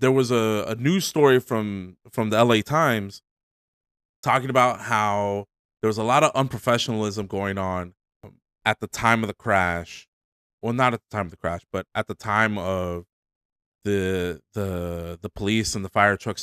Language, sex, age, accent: English, male, 30-49, American